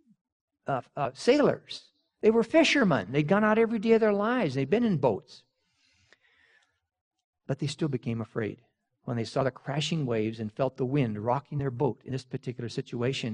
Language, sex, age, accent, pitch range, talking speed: English, male, 60-79, American, 125-190 Hz, 180 wpm